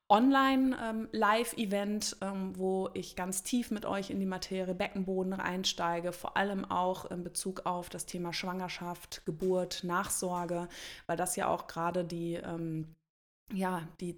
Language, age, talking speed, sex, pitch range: German, 20-39, 125 wpm, female, 185-215 Hz